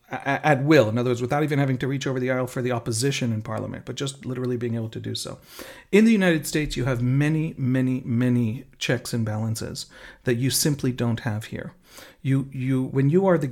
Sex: male